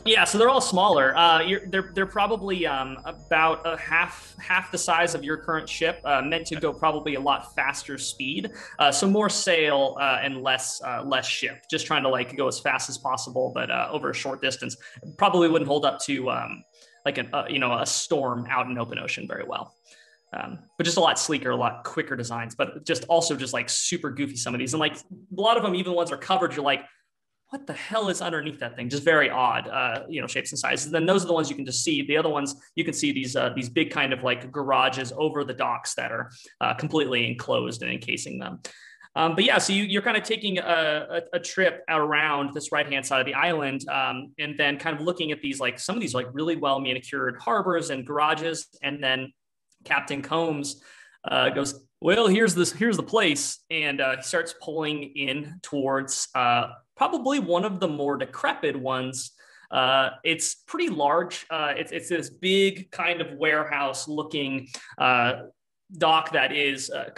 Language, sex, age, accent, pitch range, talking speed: English, male, 20-39, American, 135-175 Hz, 215 wpm